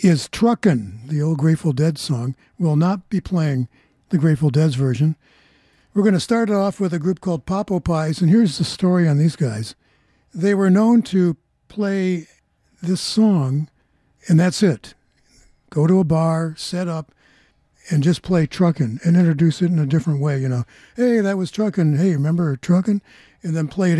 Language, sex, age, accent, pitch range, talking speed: English, male, 60-79, American, 145-185 Hz, 185 wpm